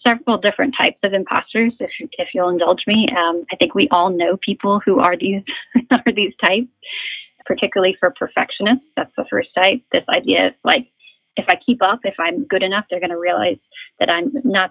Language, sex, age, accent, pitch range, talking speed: English, female, 30-49, American, 180-255 Hz, 200 wpm